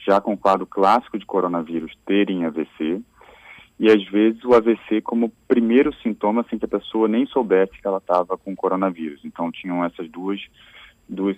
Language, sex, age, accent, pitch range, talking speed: Portuguese, male, 40-59, Brazilian, 85-100 Hz, 175 wpm